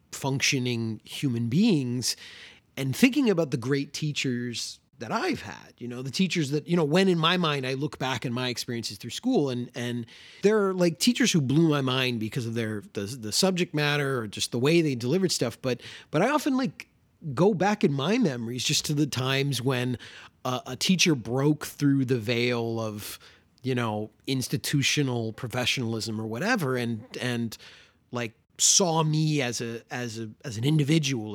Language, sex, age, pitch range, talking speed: English, male, 30-49, 120-165 Hz, 185 wpm